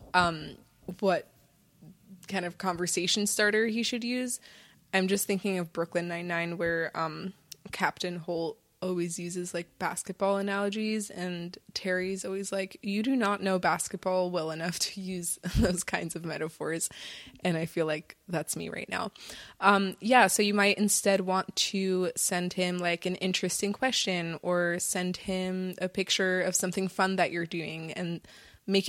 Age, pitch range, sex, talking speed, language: 20-39, 170-195 Hz, female, 160 wpm, English